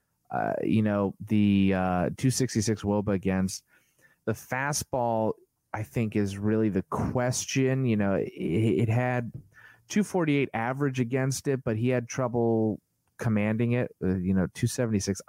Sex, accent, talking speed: male, American, 135 wpm